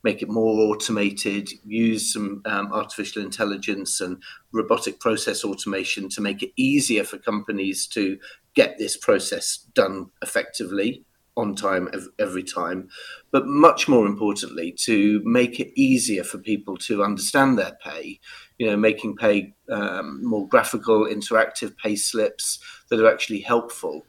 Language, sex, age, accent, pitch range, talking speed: English, male, 40-59, British, 100-125 Hz, 140 wpm